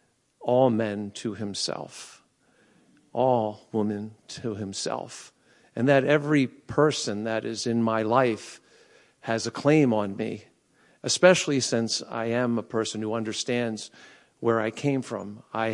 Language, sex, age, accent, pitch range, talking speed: English, male, 50-69, American, 110-130 Hz, 135 wpm